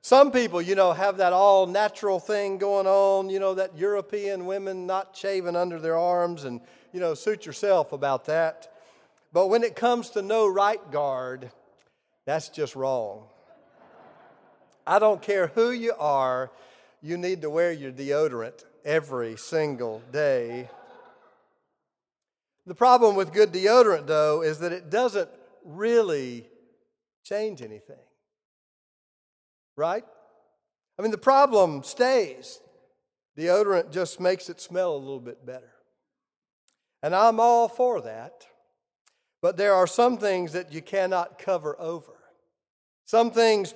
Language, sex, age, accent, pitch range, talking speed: English, male, 40-59, American, 160-215 Hz, 135 wpm